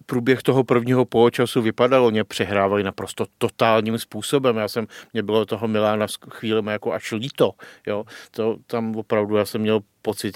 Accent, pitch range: native, 105-120 Hz